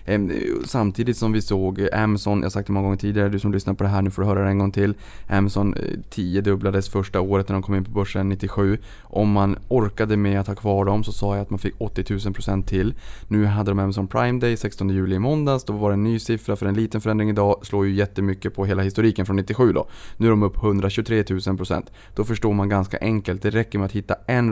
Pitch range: 95-110 Hz